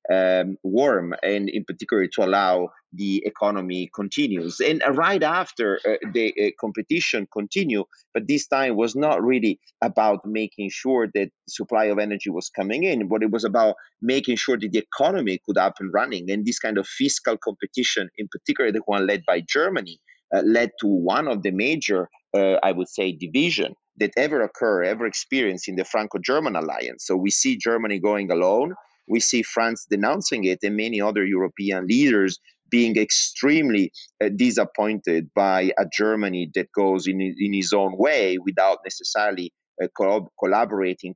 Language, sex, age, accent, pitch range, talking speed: English, male, 30-49, Italian, 95-120 Hz, 170 wpm